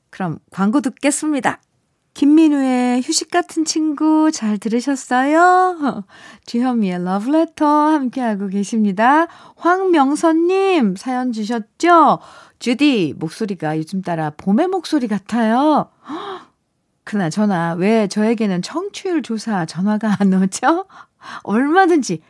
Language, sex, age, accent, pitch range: Korean, female, 40-59, native, 205-310 Hz